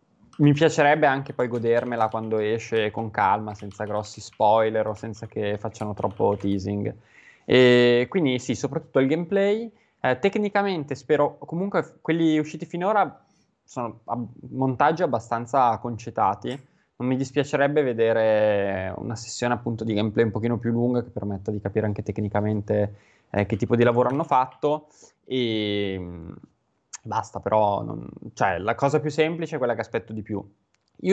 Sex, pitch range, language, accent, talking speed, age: male, 110-140 Hz, Italian, native, 150 wpm, 20-39